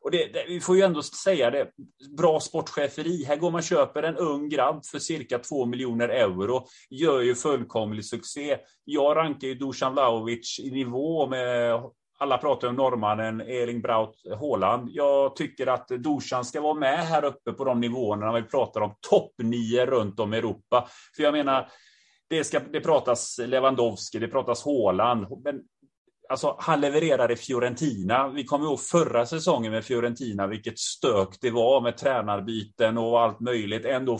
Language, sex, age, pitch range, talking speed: Swedish, male, 30-49, 115-145 Hz, 170 wpm